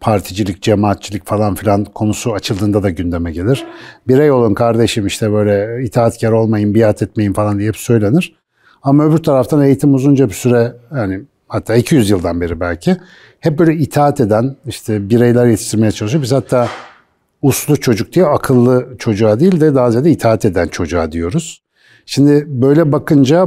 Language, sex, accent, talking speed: Turkish, male, native, 155 wpm